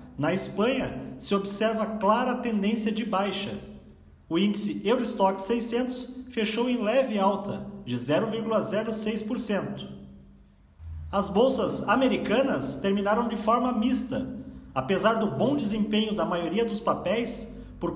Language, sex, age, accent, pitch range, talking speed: Portuguese, male, 40-59, Brazilian, 200-235 Hz, 115 wpm